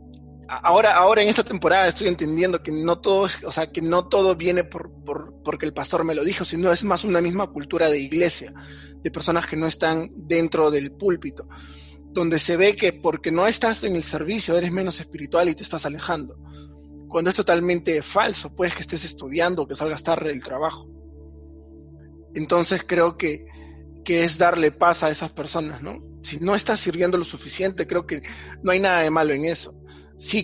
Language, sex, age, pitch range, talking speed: Spanish, male, 20-39, 145-175 Hz, 195 wpm